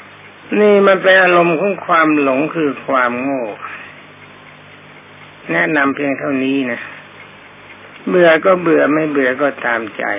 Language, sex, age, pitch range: Thai, male, 60-79, 135-180 Hz